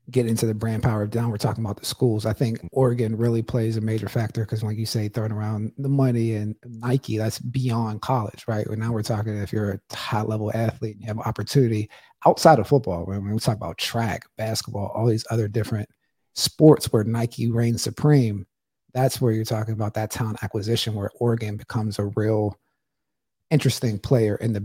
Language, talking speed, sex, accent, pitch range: English, 200 wpm, male, American, 110-130 Hz